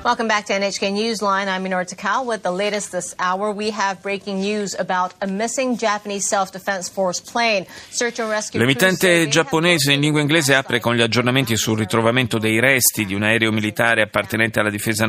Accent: native